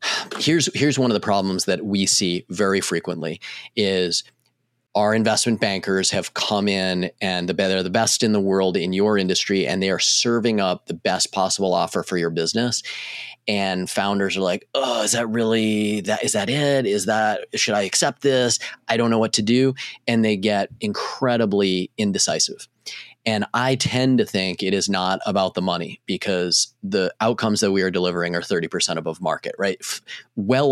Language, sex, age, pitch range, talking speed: English, male, 30-49, 95-110 Hz, 185 wpm